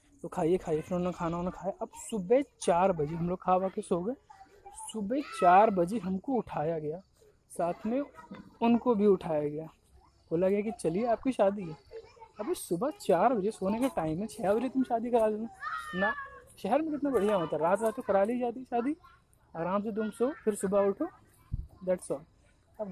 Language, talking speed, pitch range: Hindi, 200 wpm, 185-250 Hz